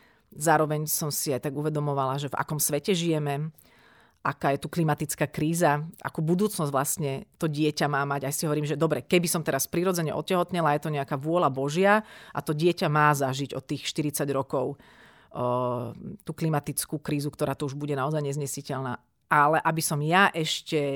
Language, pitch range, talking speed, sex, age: Slovak, 145-170 Hz, 180 wpm, female, 40-59